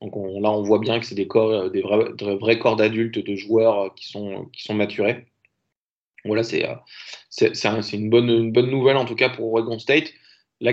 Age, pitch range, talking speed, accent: 20-39, 105-135 Hz, 220 wpm, French